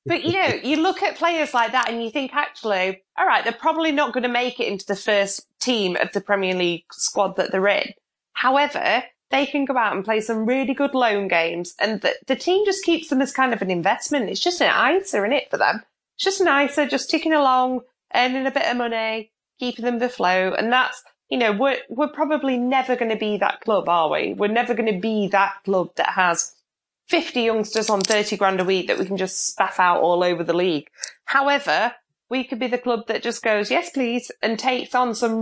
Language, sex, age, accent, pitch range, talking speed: English, female, 20-39, British, 210-275 Hz, 230 wpm